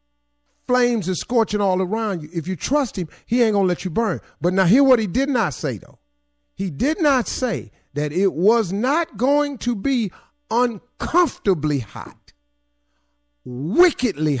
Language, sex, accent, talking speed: English, male, American, 165 wpm